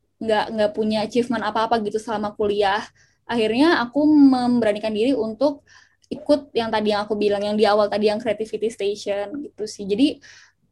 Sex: female